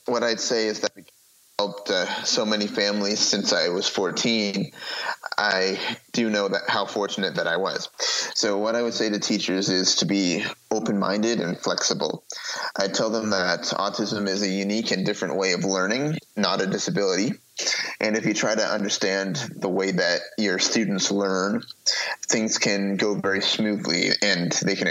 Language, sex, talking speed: English, male, 175 wpm